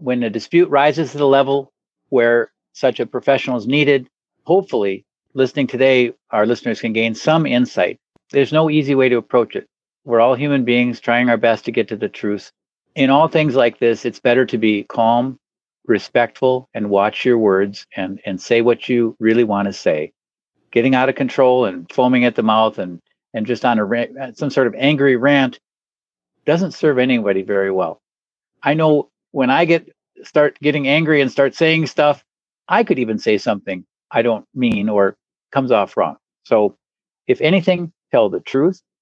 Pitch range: 115-150 Hz